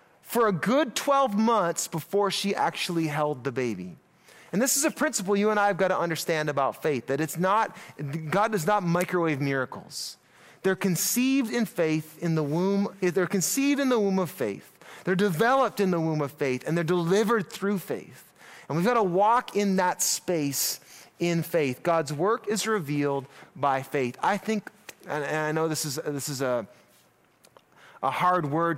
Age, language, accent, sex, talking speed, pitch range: 30-49, English, American, male, 180 wpm, 140-190 Hz